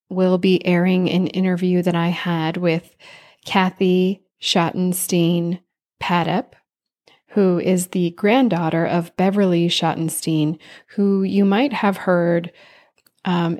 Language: English